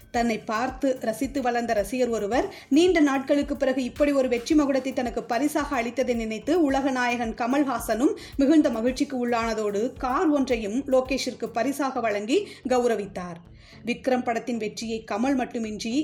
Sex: female